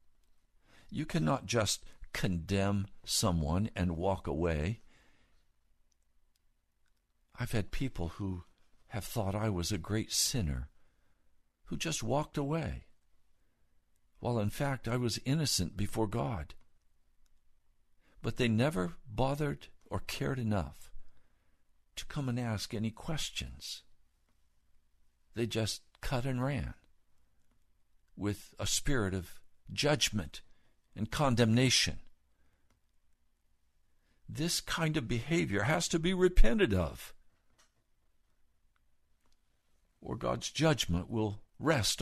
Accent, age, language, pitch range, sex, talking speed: American, 60-79, English, 75-120 Hz, male, 100 wpm